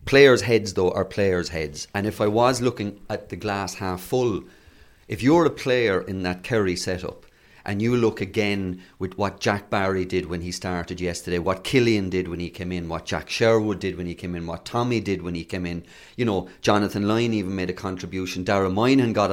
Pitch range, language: 90-115 Hz, English